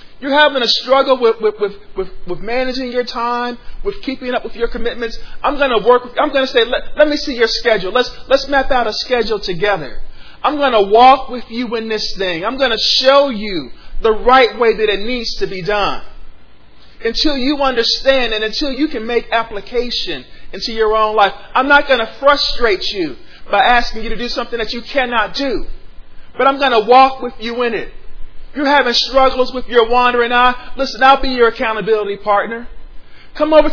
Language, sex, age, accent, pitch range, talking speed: English, male, 40-59, American, 220-270 Hz, 205 wpm